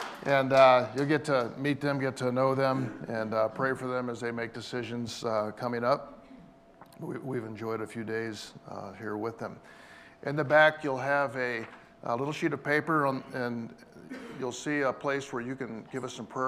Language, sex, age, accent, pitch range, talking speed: English, male, 50-69, American, 120-135 Hz, 210 wpm